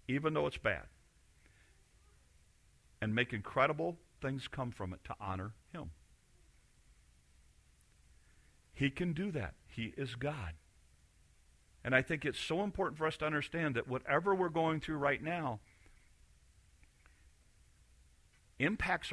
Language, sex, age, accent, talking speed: English, male, 50-69, American, 120 wpm